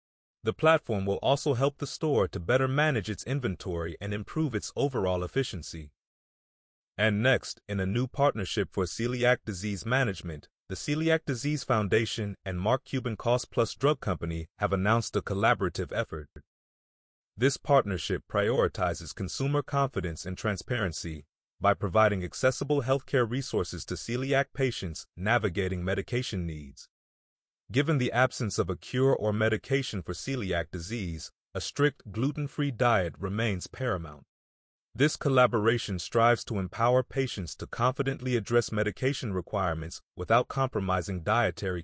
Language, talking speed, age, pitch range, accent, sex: English, 130 wpm, 30-49, 95-130 Hz, American, male